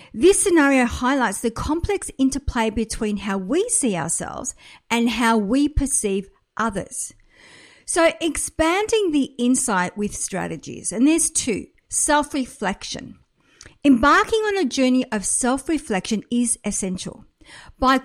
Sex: female